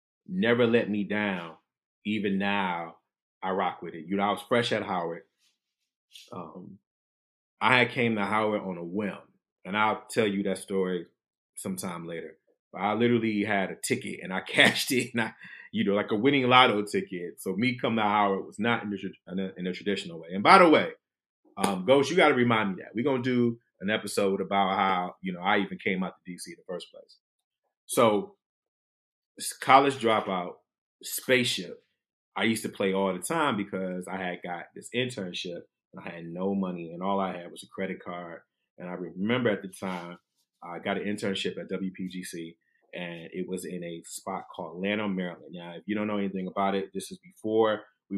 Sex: male